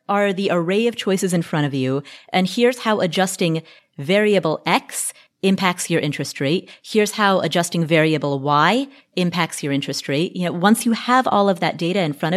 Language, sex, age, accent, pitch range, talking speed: English, female, 30-49, American, 165-210 Hz, 180 wpm